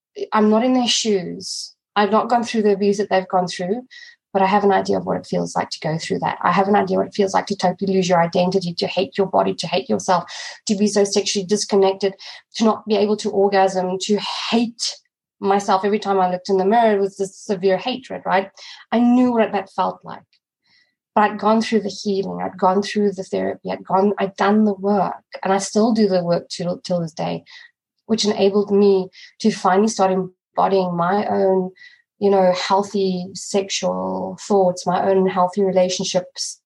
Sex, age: female, 20-39